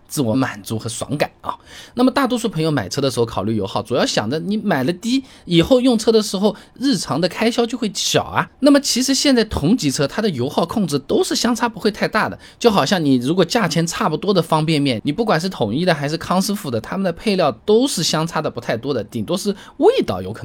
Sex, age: male, 20-39